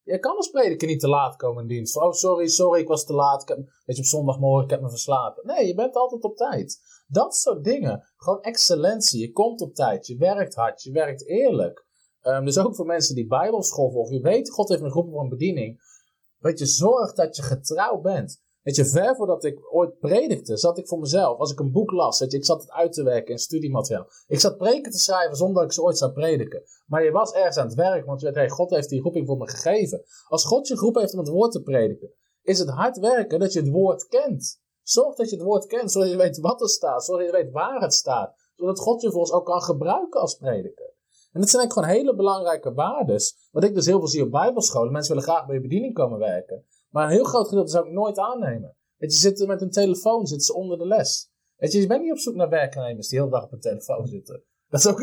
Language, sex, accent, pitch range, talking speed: Dutch, male, Dutch, 145-225 Hz, 265 wpm